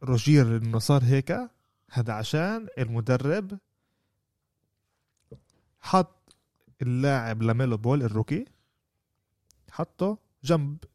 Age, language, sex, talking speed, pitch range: 20-39, Arabic, male, 75 wpm, 115-150 Hz